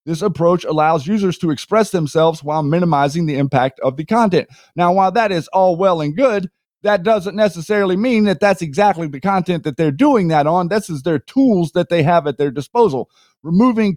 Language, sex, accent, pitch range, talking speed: English, male, American, 150-195 Hz, 200 wpm